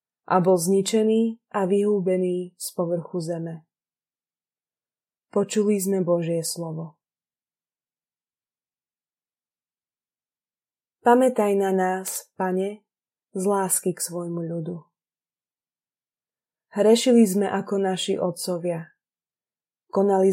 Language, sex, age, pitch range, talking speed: Slovak, female, 20-39, 175-200 Hz, 75 wpm